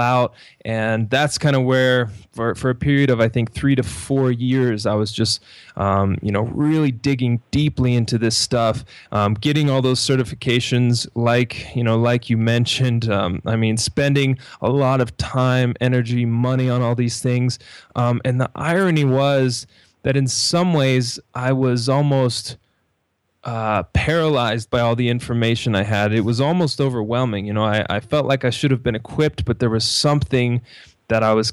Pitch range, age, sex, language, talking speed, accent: 110-130 Hz, 20-39, male, English, 185 wpm, American